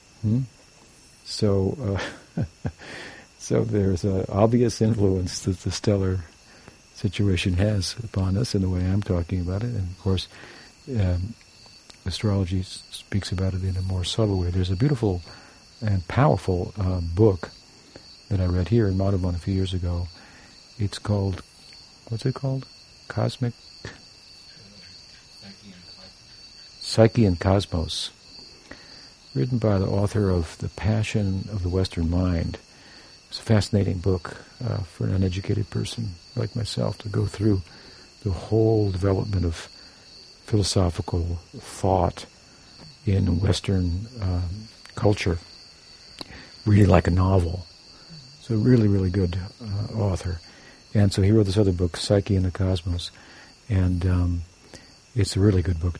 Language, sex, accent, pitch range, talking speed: English, male, American, 90-110 Hz, 135 wpm